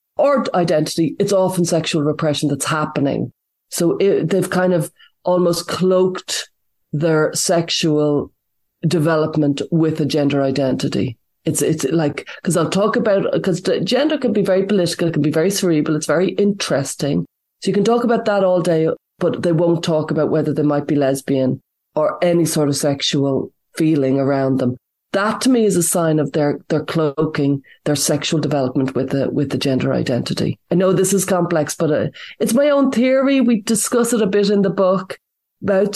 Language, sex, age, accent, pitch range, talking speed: English, female, 30-49, Irish, 150-200 Hz, 180 wpm